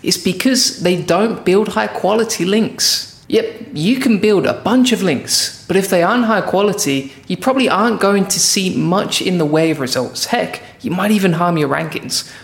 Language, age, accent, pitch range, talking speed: English, 20-39, British, 160-215 Hz, 200 wpm